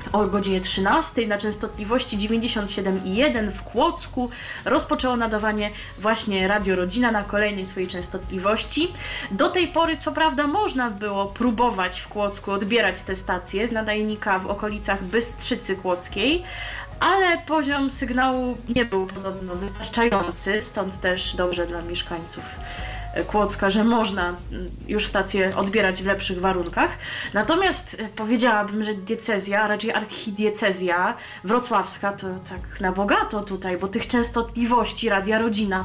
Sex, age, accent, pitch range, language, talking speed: female, 20-39, native, 190-235 Hz, Polish, 125 wpm